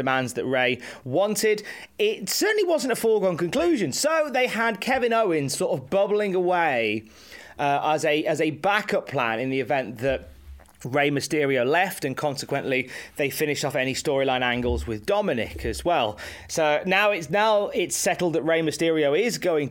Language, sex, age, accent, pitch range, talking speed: English, male, 30-49, British, 140-205 Hz, 170 wpm